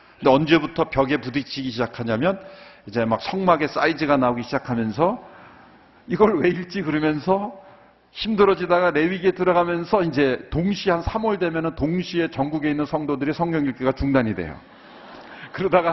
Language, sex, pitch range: Korean, male, 120-170 Hz